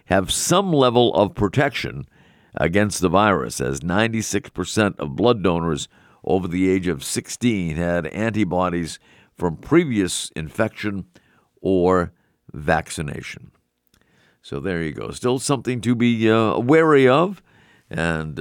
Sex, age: male, 50-69